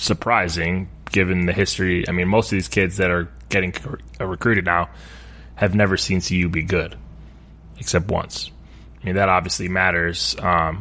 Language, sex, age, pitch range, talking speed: English, male, 20-39, 85-100 Hz, 160 wpm